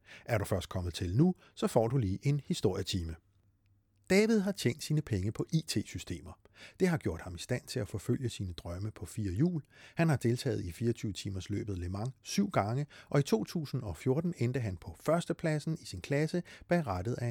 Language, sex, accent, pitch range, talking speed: Danish, male, native, 100-140 Hz, 195 wpm